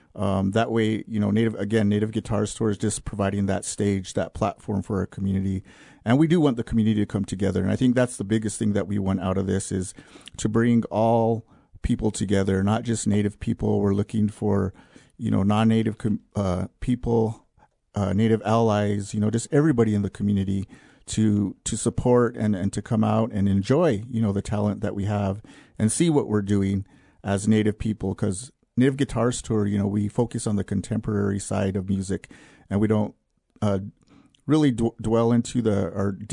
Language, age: English, 40-59